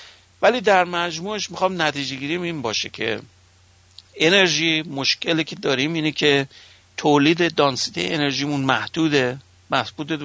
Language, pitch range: English, 125-160 Hz